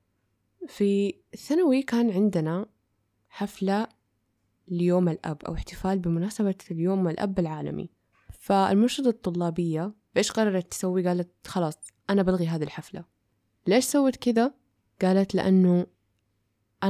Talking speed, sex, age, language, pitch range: 105 wpm, female, 10-29, Arabic, 165-200 Hz